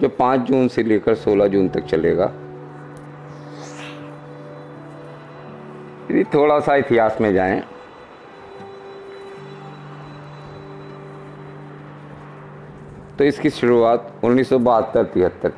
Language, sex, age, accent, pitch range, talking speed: Hindi, male, 50-69, native, 95-130 Hz, 75 wpm